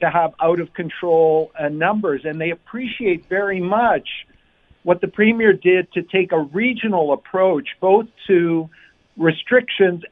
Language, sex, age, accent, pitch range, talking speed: English, male, 50-69, American, 165-205 Hz, 140 wpm